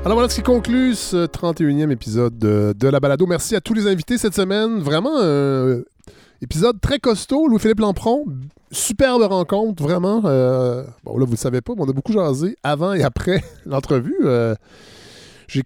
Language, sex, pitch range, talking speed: French, male, 125-190 Hz, 175 wpm